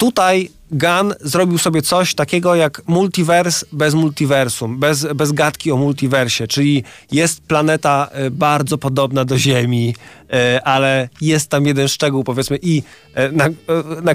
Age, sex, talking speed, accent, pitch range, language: 20-39, male, 130 wpm, native, 130-155 Hz, Polish